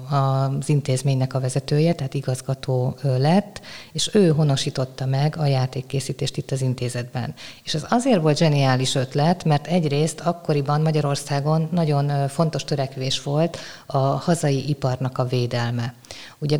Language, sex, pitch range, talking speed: Hungarian, female, 135-165 Hz, 130 wpm